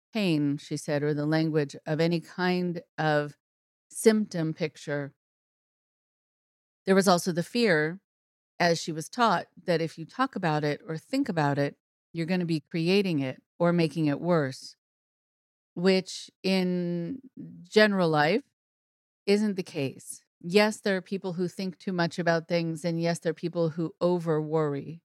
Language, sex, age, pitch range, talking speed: English, female, 40-59, 160-190 Hz, 155 wpm